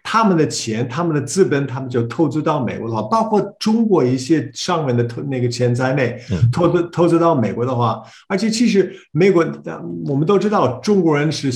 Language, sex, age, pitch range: Chinese, male, 50-69, 125-190 Hz